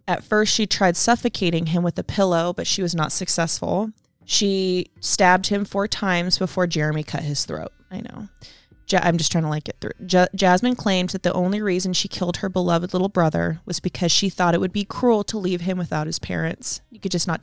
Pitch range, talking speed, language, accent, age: 170-205 Hz, 215 wpm, English, American, 20-39